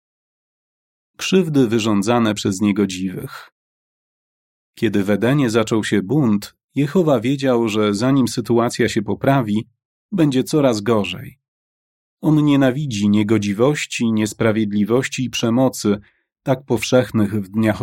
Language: Polish